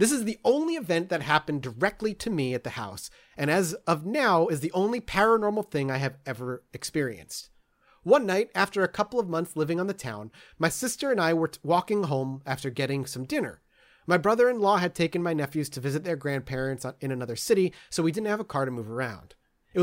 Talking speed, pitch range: 215 wpm, 130-190 Hz